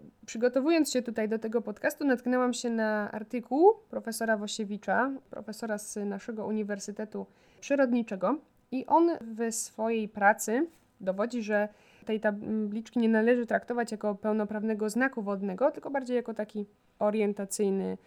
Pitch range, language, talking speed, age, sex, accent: 205-235 Hz, Polish, 125 wpm, 20-39, female, native